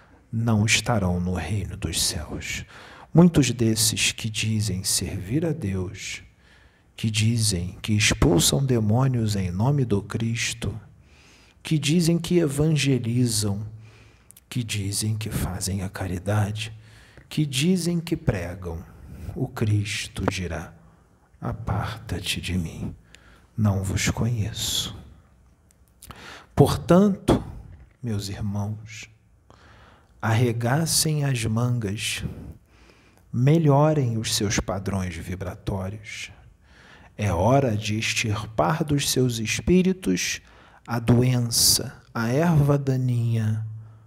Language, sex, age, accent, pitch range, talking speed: Portuguese, male, 50-69, Brazilian, 95-120 Hz, 95 wpm